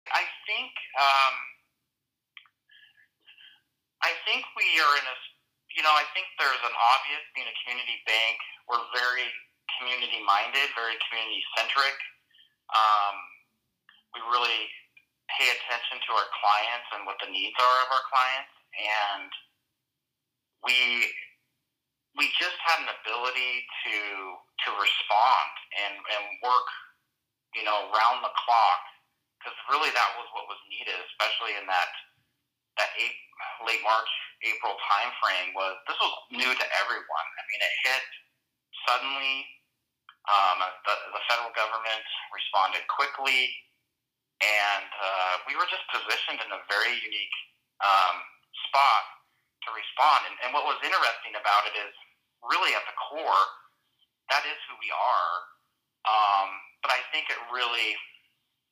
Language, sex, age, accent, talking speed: English, male, 30-49, American, 135 wpm